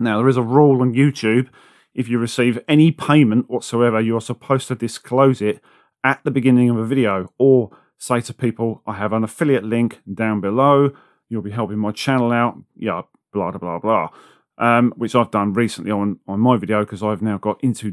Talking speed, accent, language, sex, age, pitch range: 200 wpm, British, English, male, 40-59, 110-130 Hz